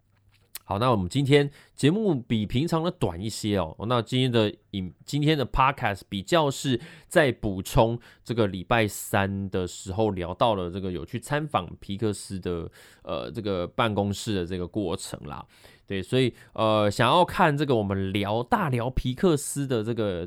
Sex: male